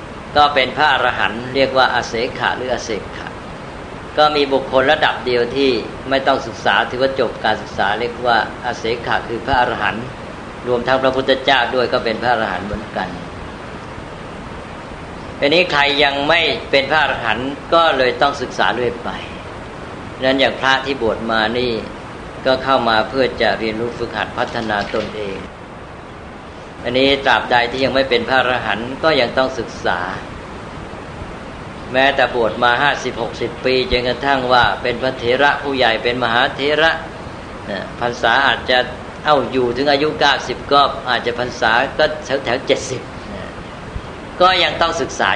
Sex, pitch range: female, 115-135 Hz